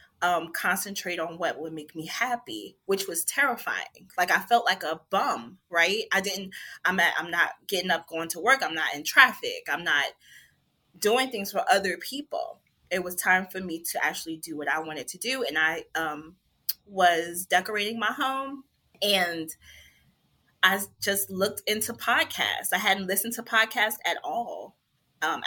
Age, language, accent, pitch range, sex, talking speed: 20-39, English, American, 165-215 Hz, female, 175 wpm